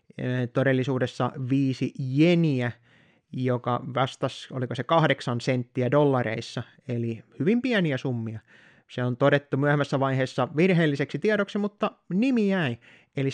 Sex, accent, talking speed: male, native, 115 wpm